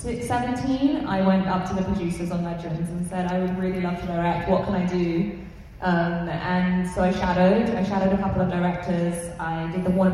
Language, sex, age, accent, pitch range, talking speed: English, female, 20-39, British, 170-190 Hz, 225 wpm